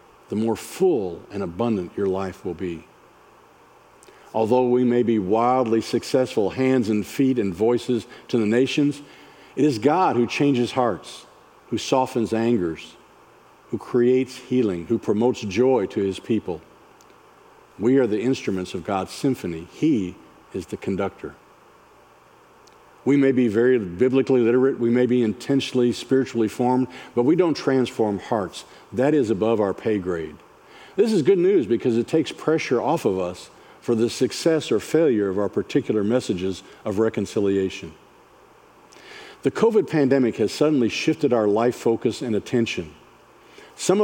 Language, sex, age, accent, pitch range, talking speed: English, male, 50-69, American, 110-140 Hz, 150 wpm